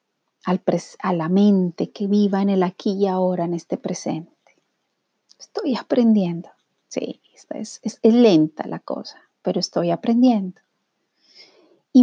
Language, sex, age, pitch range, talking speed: Spanish, female, 30-49, 185-225 Hz, 125 wpm